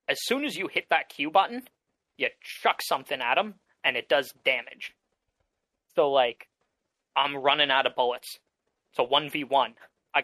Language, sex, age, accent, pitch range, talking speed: English, male, 20-39, American, 135-195 Hz, 160 wpm